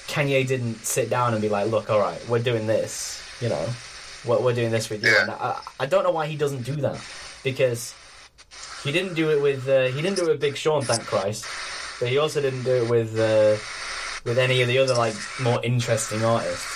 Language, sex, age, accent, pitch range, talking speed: English, male, 10-29, British, 115-140 Hz, 230 wpm